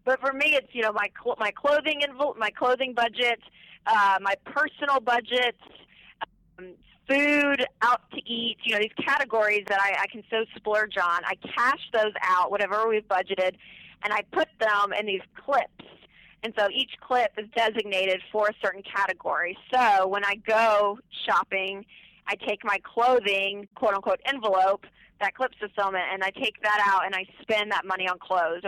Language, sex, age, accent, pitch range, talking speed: English, female, 30-49, American, 190-245 Hz, 175 wpm